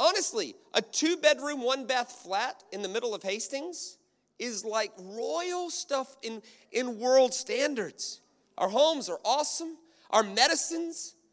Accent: American